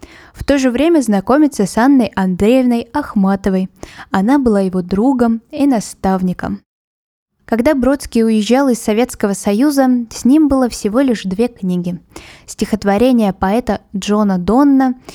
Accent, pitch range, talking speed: native, 195-250 Hz, 125 wpm